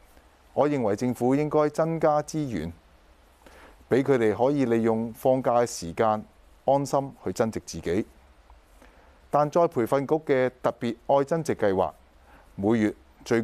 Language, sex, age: Chinese, male, 30-49